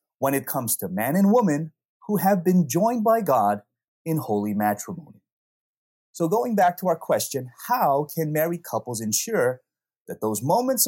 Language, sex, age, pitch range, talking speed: English, male, 30-49, 125-180 Hz, 165 wpm